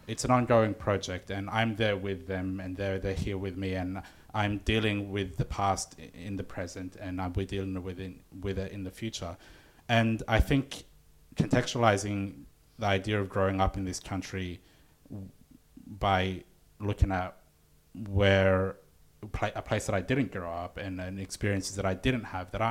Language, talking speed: English, 185 wpm